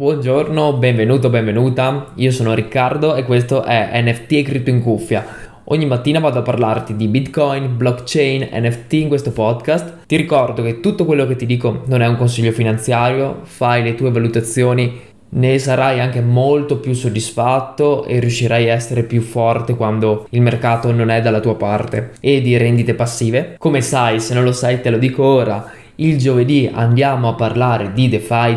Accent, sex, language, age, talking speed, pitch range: native, male, Italian, 20-39, 175 wpm, 115-135 Hz